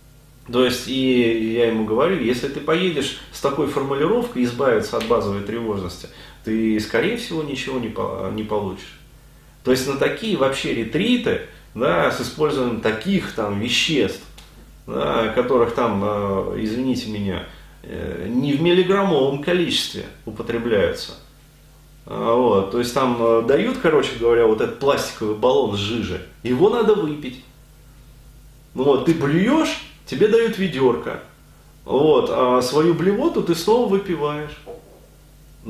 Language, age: Russian, 30-49